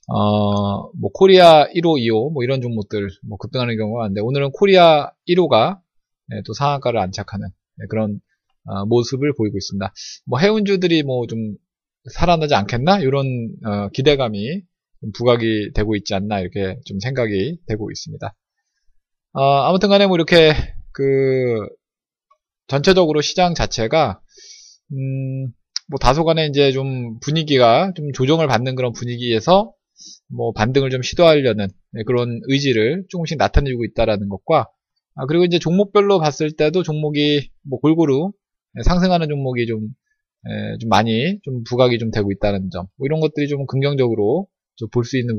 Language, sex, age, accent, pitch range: Korean, male, 20-39, native, 110-155 Hz